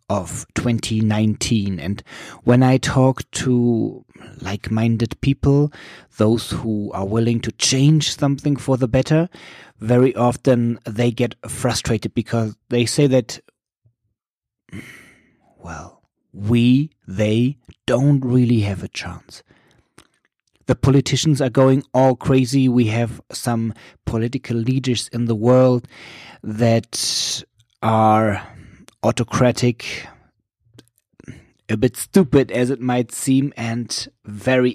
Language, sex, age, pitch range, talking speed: English, male, 30-49, 105-130 Hz, 105 wpm